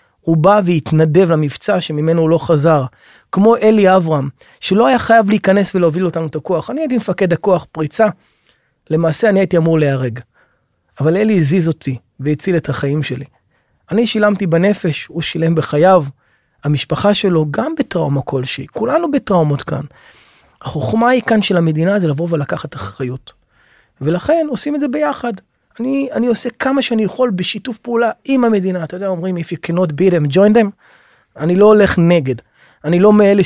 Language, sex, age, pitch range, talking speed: Hebrew, male, 30-49, 160-210 Hz, 165 wpm